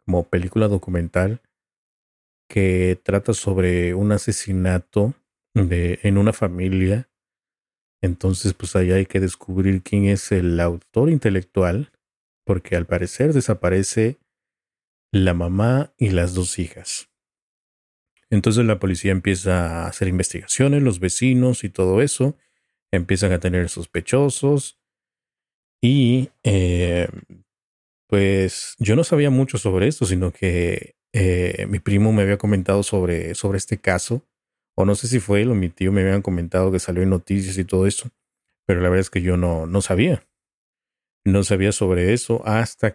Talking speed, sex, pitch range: 145 wpm, male, 90-110 Hz